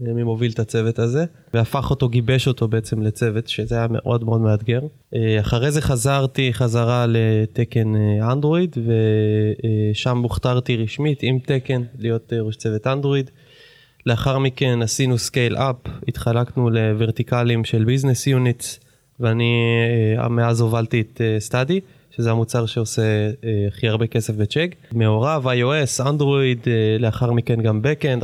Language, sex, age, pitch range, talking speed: Hebrew, male, 20-39, 115-135 Hz, 130 wpm